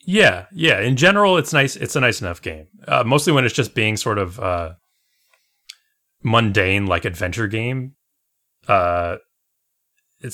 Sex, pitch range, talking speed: male, 90-125 Hz, 150 wpm